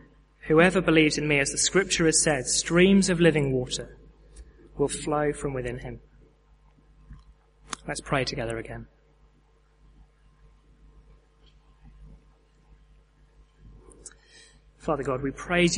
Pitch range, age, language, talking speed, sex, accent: 140-160 Hz, 20-39, English, 100 wpm, male, British